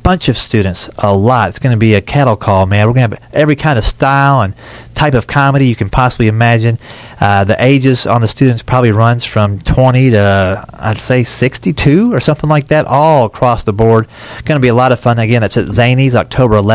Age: 30-49